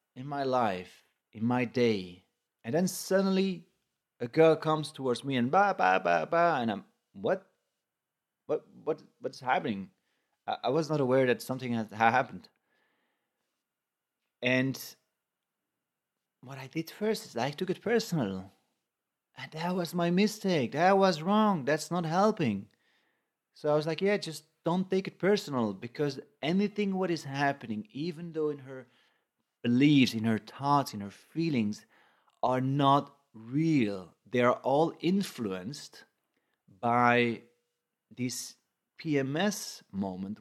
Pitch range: 120-175 Hz